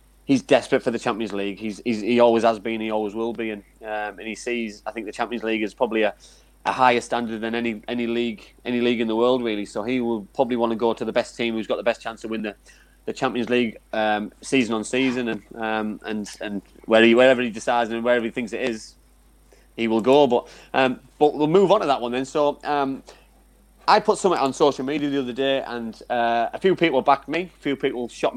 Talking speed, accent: 250 wpm, British